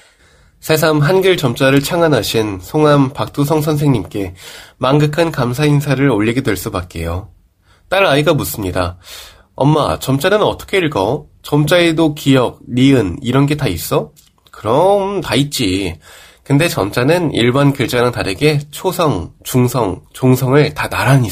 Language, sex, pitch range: Korean, male, 105-155 Hz